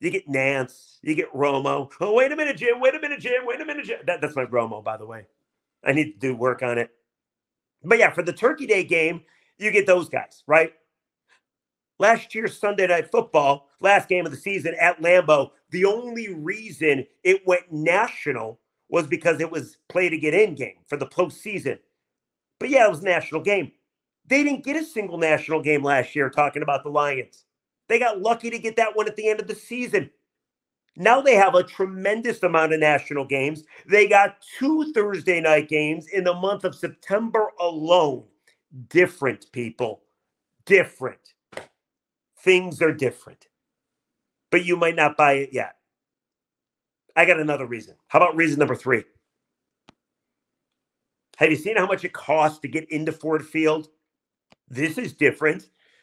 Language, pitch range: English, 150-210 Hz